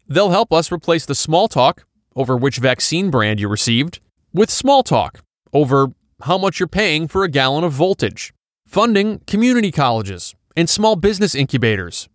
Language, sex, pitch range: English, male, 125-195 Hz